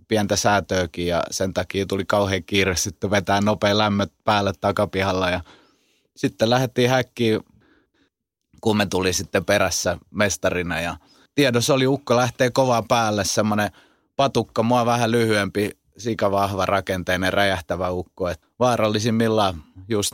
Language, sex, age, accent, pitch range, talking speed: Finnish, male, 30-49, native, 90-110 Hz, 125 wpm